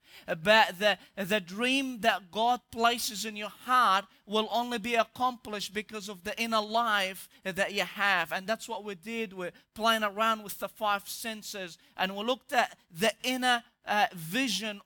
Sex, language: male, English